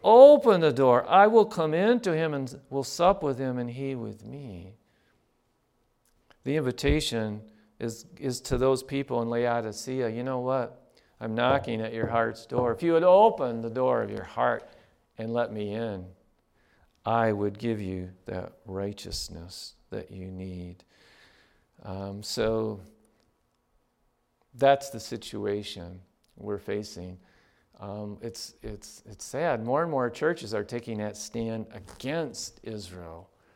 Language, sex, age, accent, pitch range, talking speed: English, male, 50-69, American, 105-125 Hz, 145 wpm